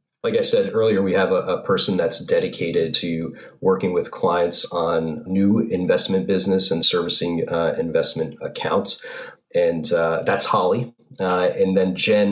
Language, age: English, 30-49